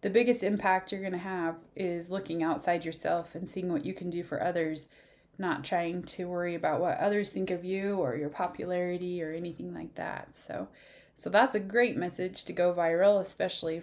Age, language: 20-39, English